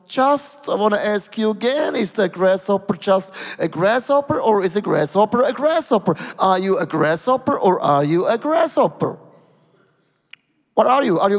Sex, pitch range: male, 175-230 Hz